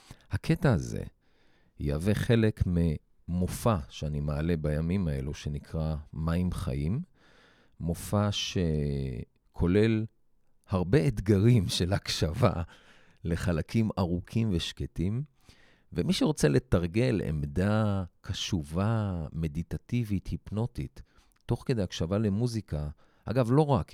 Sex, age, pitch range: male, 40-59, 75-105 Hz